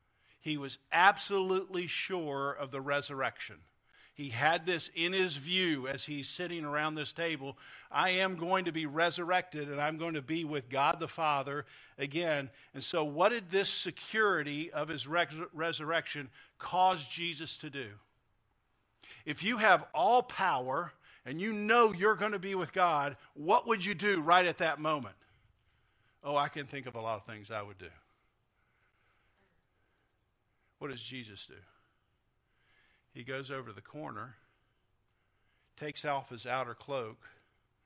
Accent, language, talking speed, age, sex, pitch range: American, English, 155 wpm, 50-69, male, 110-165 Hz